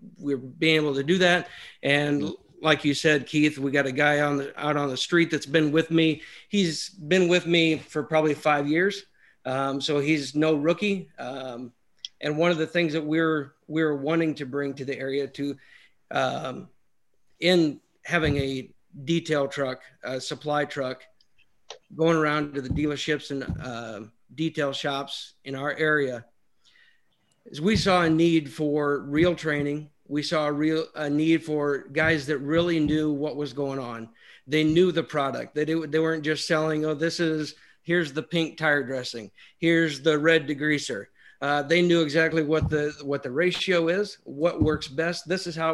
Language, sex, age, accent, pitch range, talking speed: English, male, 50-69, American, 145-165 Hz, 180 wpm